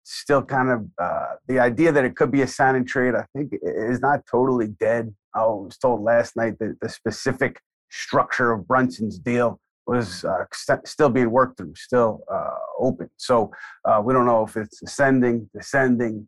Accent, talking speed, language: American, 185 wpm, English